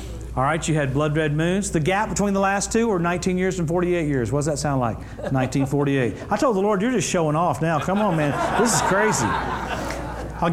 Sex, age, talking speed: male, 40-59, 230 wpm